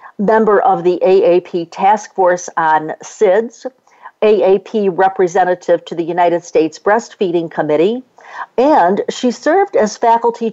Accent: American